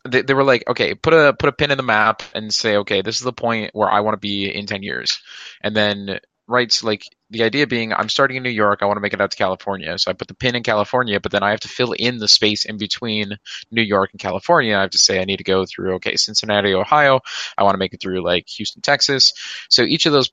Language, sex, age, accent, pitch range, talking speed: English, male, 20-39, American, 100-115 Hz, 275 wpm